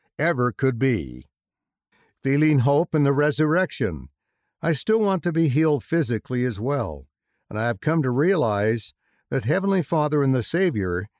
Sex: male